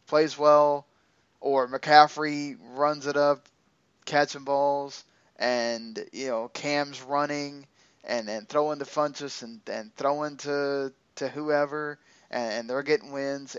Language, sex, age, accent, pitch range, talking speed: English, male, 20-39, American, 130-150 Hz, 135 wpm